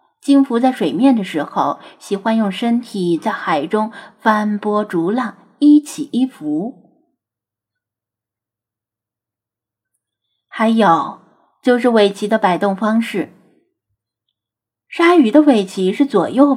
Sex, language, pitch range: female, Chinese, 180-260 Hz